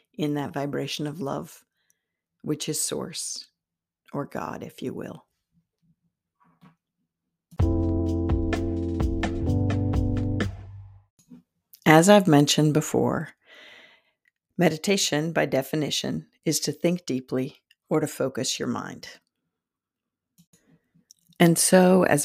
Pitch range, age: 135-160 Hz, 50-69